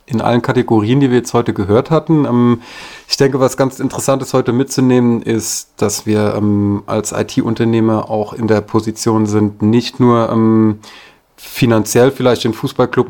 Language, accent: German, German